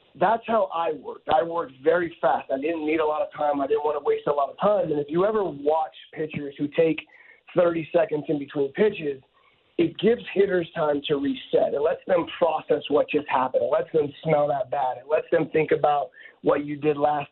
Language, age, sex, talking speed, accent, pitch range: English, 30-49, male, 225 wpm, American, 150-200 Hz